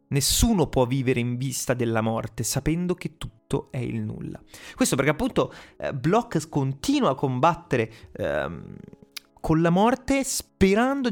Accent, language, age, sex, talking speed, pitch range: native, Italian, 30-49, male, 140 wpm, 125-180 Hz